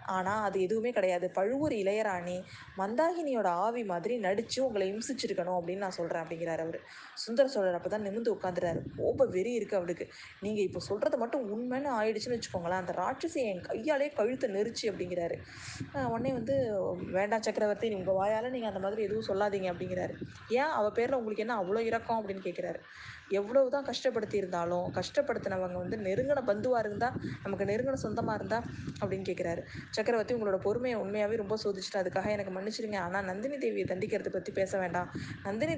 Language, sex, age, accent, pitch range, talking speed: Tamil, female, 20-39, native, 190-240 Hz, 145 wpm